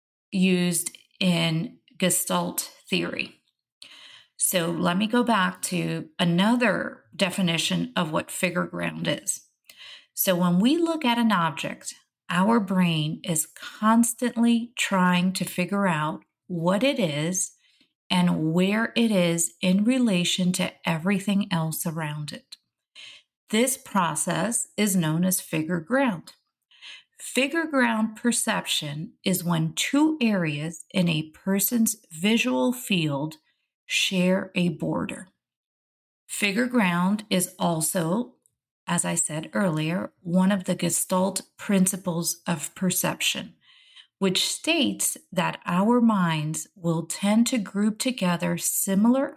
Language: English